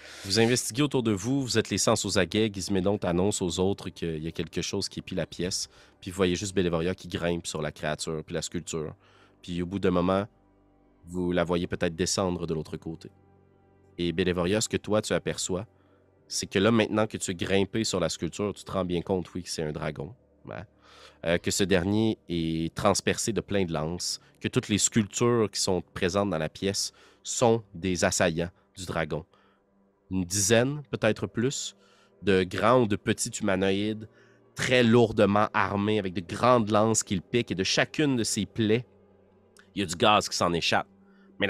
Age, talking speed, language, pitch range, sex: 30-49, 200 wpm, French, 90-105 Hz, male